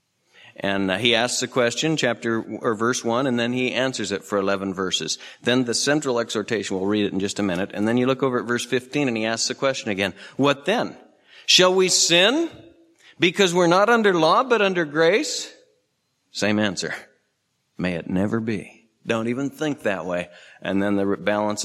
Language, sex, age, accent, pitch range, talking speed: English, male, 50-69, American, 110-170 Hz, 195 wpm